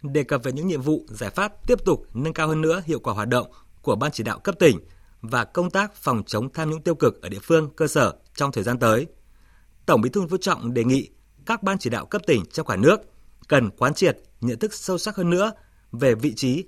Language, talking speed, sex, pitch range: Vietnamese, 250 wpm, male, 120-175 Hz